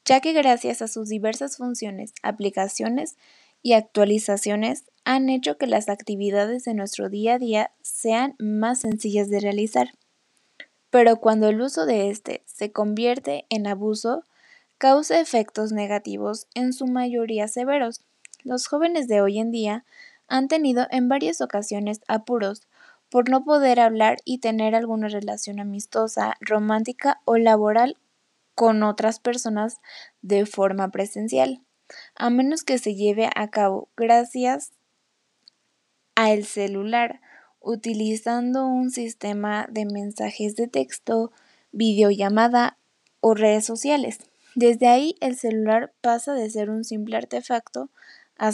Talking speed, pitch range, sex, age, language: 130 wpm, 210-250 Hz, female, 10-29, English